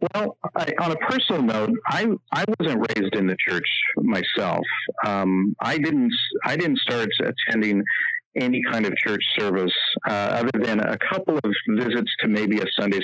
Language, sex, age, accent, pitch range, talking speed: English, male, 50-69, American, 95-130 Hz, 170 wpm